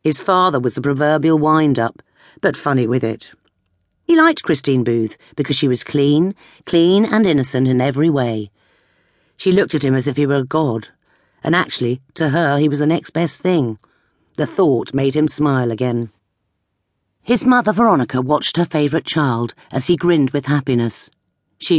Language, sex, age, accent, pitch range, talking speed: English, female, 50-69, British, 125-165 Hz, 175 wpm